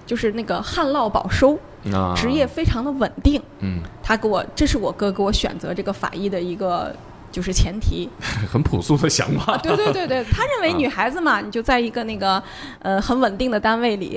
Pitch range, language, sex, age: 190-260 Hz, Chinese, female, 20-39